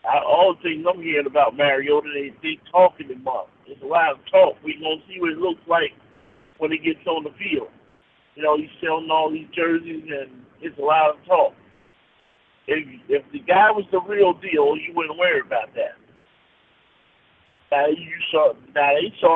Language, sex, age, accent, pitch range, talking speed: English, male, 50-69, American, 155-260 Hz, 200 wpm